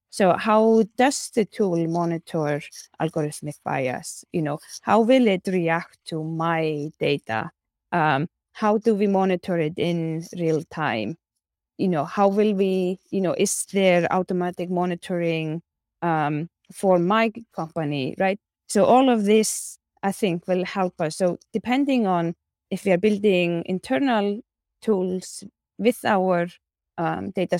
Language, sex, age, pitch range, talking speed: English, female, 20-39, 170-210 Hz, 140 wpm